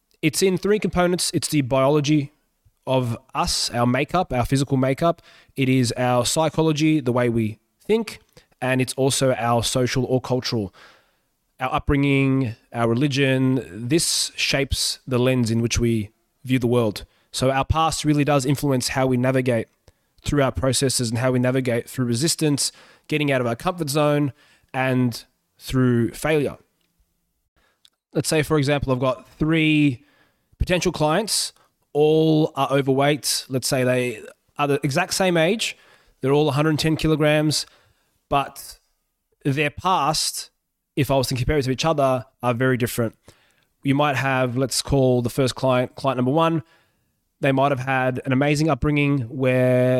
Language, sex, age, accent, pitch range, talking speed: English, male, 20-39, Australian, 125-150 Hz, 150 wpm